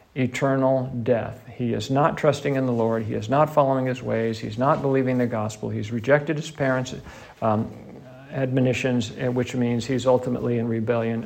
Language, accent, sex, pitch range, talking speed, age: English, American, male, 120-145 Hz, 170 wpm, 50-69